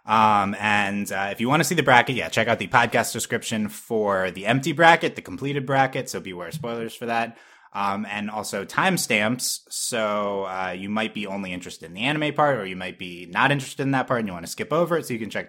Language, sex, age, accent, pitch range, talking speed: English, male, 20-39, American, 100-130 Hz, 245 wpm